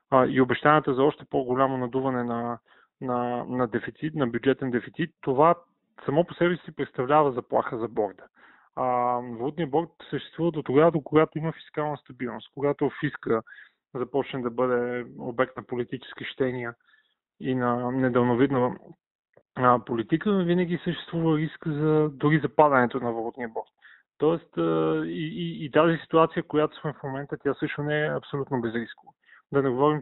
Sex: male